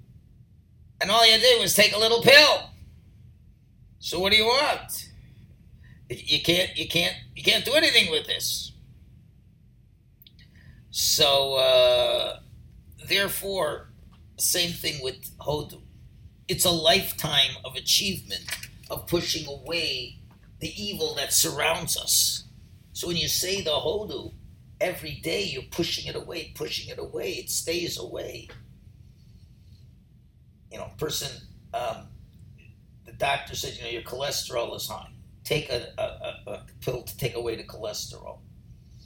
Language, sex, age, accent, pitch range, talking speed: English, male, 50-69, American, 110-170 Hz, 130 wpm